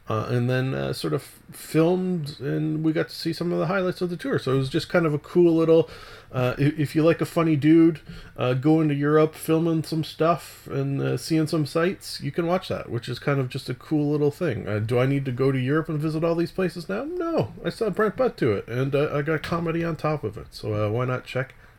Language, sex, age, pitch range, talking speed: English, male, 30-49, 115-155 Hz, 260 wpm